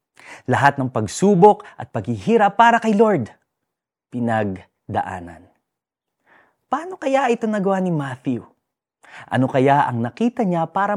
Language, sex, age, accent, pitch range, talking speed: Filipino, male, 30-49, native, 115-170 Hz, 115 wpm